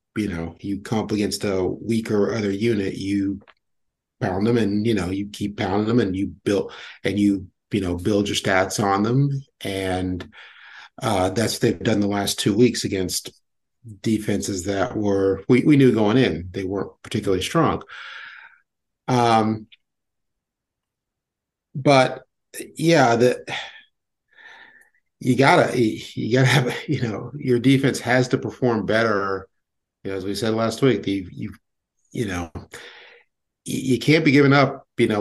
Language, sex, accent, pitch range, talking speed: English, male, American, 100-125 Hz, 155 wpm